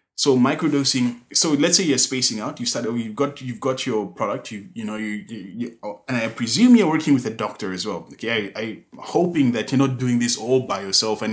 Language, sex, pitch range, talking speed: English, male, 110-135 Hz, 245 wpm